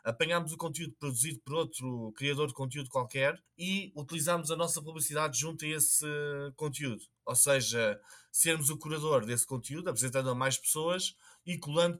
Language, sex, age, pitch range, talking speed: Portuguese, male, 20-39, 130-165 Hz, 160 wpm